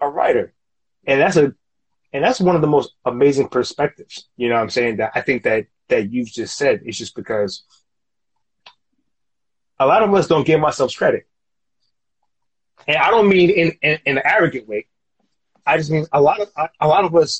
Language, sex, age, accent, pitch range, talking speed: English, male, 30-49, American, 130-175 Hz, 195 wpm